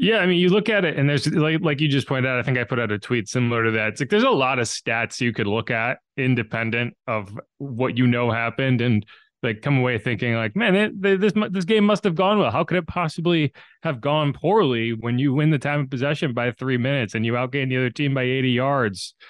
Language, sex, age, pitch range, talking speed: English, male, 20-39, 120-175 Hz, 260 wpm